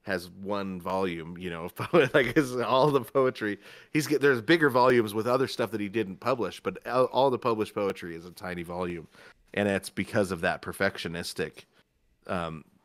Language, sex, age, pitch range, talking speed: English, male, 30-49, 95-120 Hz, 180 wpm